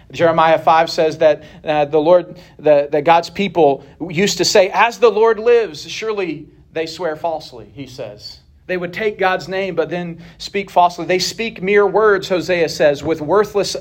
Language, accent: English, American